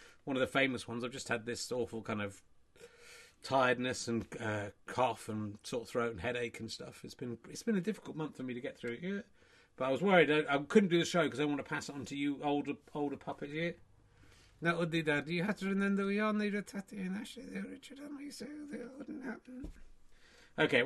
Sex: male